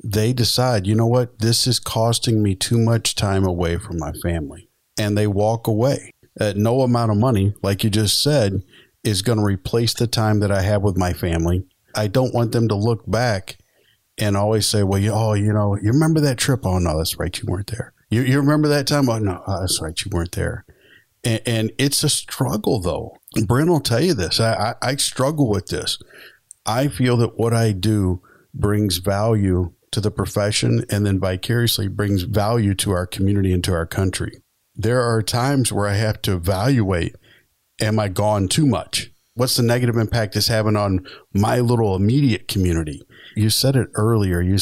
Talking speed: 200 wpm